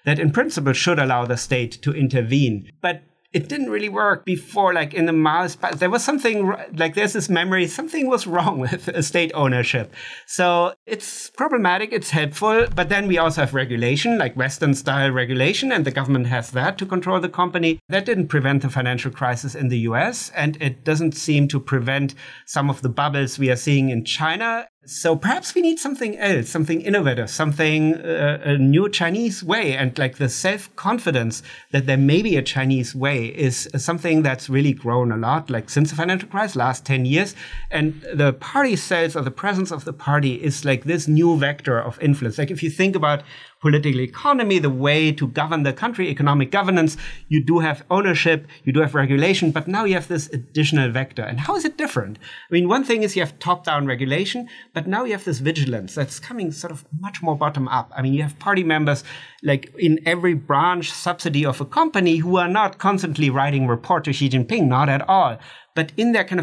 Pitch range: 135-180 Hz